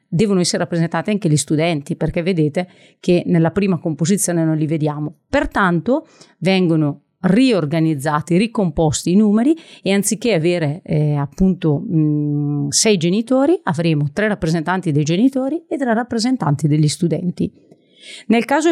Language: Italian